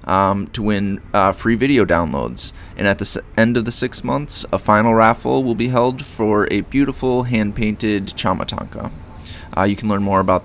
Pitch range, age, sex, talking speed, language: 100-120 Hz, 20-39, male, 190 wpm, English